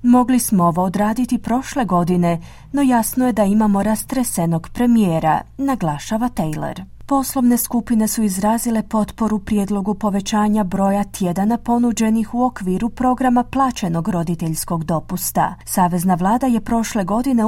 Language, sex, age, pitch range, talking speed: Croatian, female, 40-59, 180-245 Hz, 125 wpm